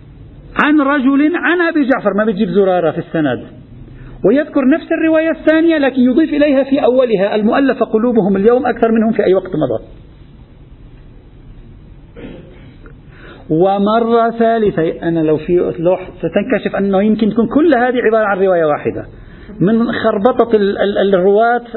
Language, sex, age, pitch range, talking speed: Arabic, male, 50-69, 185-255 Hz, 125 wpm